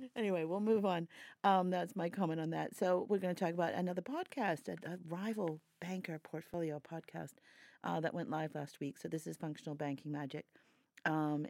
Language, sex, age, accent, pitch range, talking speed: English, female, 40-59, American, 140-170 Hz, 195 wpm